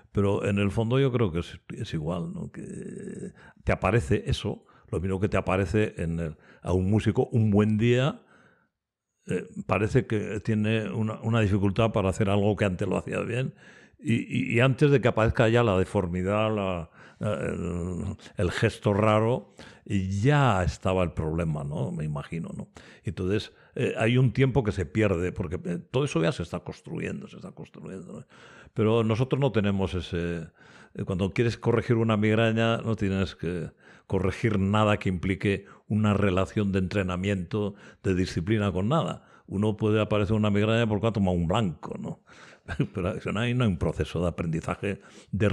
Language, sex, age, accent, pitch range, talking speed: Spanish, male, 60-79, Spanish, 95-115 Hz, 175 wpm